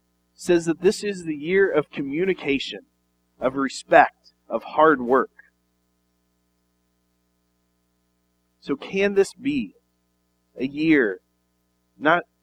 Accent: American